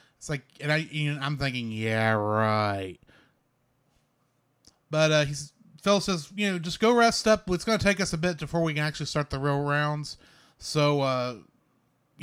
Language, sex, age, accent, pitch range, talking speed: English, male, 30-49, American, 135-180 Hz, 185 wpm